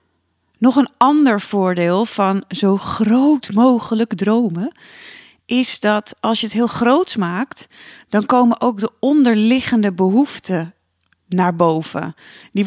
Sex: female